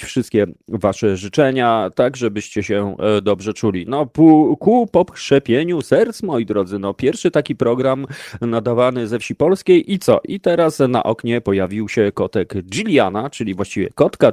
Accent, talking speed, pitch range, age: native, 145 wpm, 110-180 Hz, 30-49